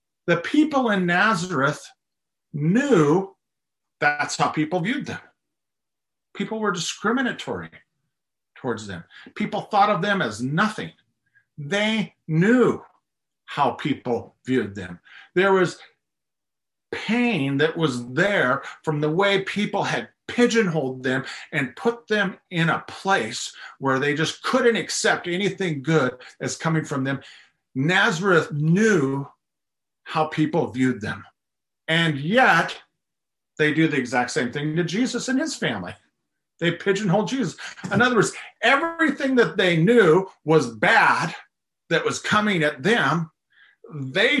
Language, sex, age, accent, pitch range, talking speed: English, male, 50-69, American, 150-205 Hz, 125 wpm